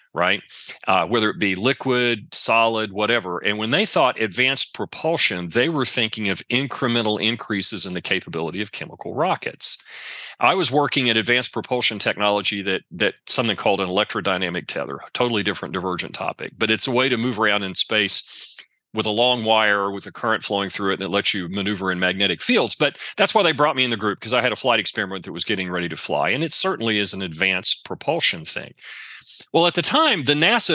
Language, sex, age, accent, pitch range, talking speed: English, male, 40-59, American, 100-130 Hz, 210 wpm